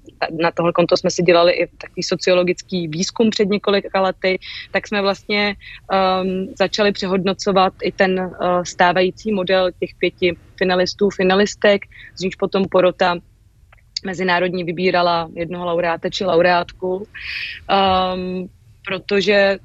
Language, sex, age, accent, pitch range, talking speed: Czech, female, 30-49, native, 175-200 Hz, 110 wpm